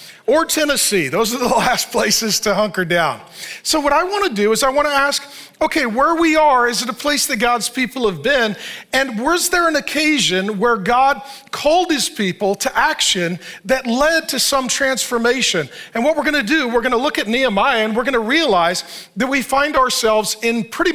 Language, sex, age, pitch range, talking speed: English, male, 40-59, 205-280 Hz, 200 wpm